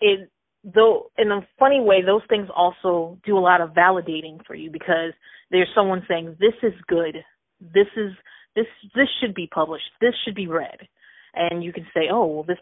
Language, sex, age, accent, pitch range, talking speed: English, female, 30-49, American, 170-215 Hz, 195 wpm